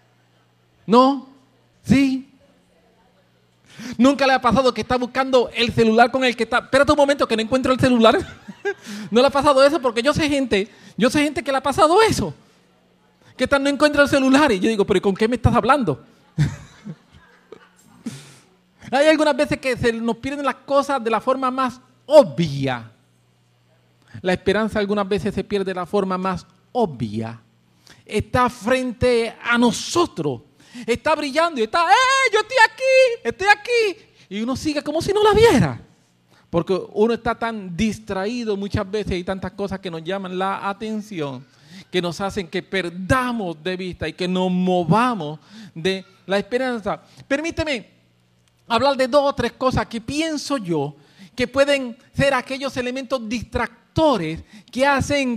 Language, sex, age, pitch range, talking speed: English, male, 40-59, 185-265 Hz, 160 wpm